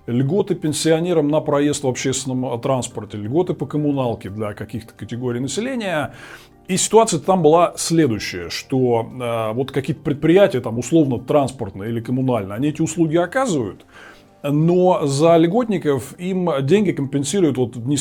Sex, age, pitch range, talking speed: male, 20-39, 125-165 Hz, 135 wpm